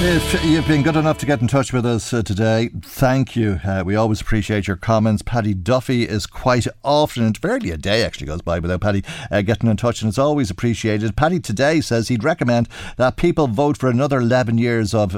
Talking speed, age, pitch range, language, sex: 220 wpm, 50-69, 100-125 Hz, English, male